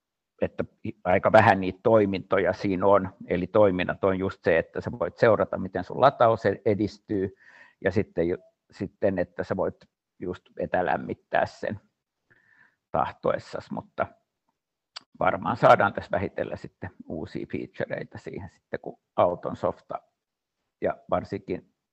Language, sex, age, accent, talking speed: Finnish, male, 60-79, native, 120 wpm